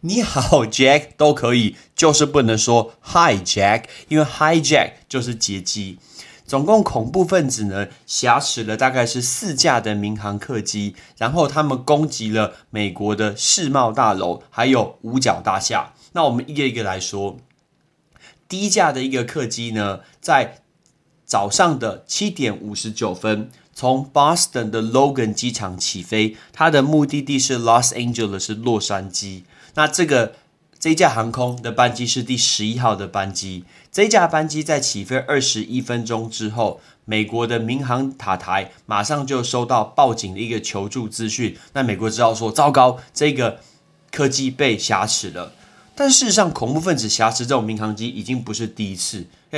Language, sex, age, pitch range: Chinese, male, 20-39, 110-145 Hz